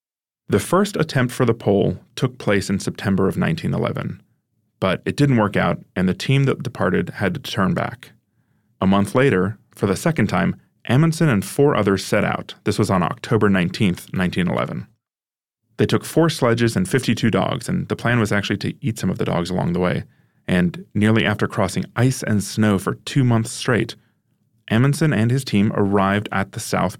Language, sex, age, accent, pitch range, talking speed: English, male, 30-49, American, 100-130 Hz, 190 wpm